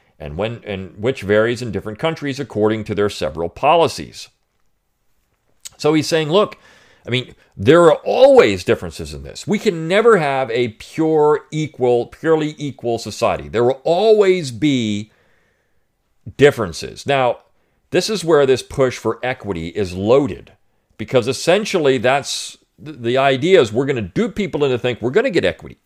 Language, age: English, 50-69